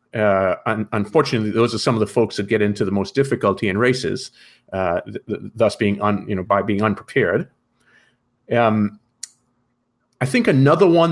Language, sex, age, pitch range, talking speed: English, male, 40-59, 110-140 Hz, 180 wpm